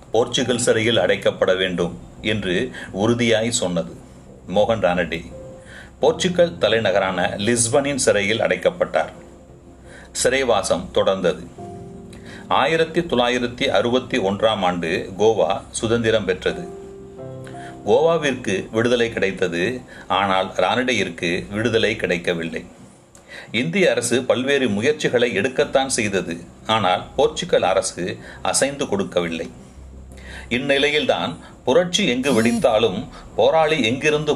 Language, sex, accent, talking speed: Tamil, male, native, 85 wpm